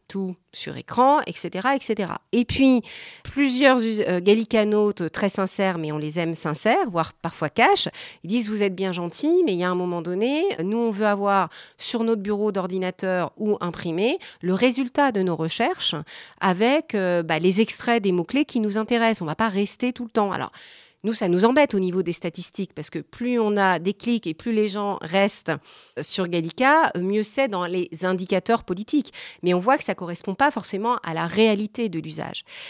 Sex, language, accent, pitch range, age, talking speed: female, French, French, 180-240 Hz, 40-59, 200 wpm